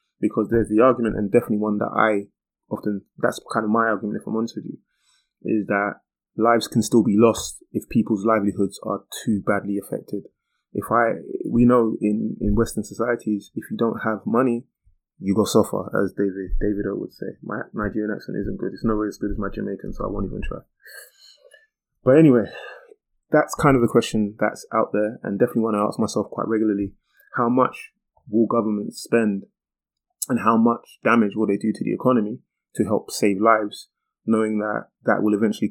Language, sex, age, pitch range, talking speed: English, male, 20-39, 105-115 Hz, 195 wpm